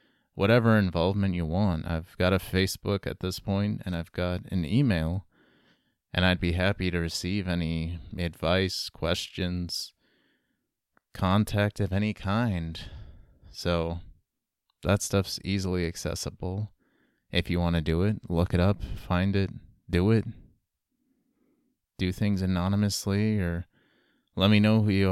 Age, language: 20-39, English